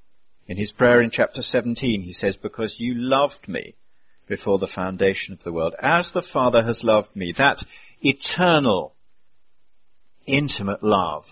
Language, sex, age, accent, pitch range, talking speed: English, male, 50-69, British, 100-150 Hz, 150 wpm